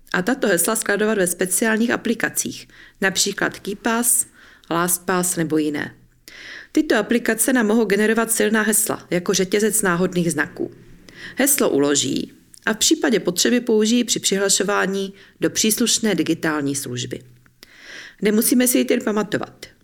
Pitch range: 170-220 Hz